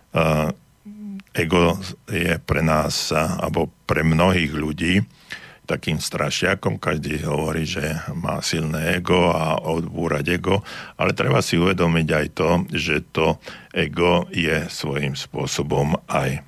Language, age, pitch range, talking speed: Slovak, 60-79, 75-85 Hz, 115 wpm